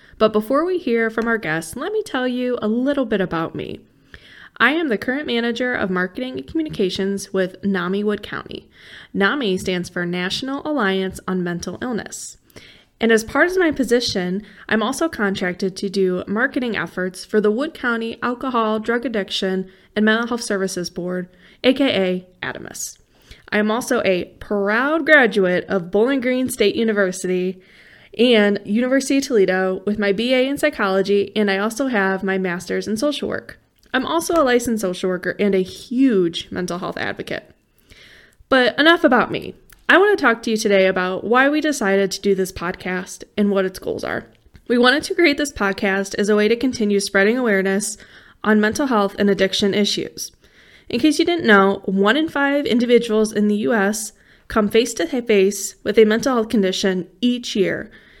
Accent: American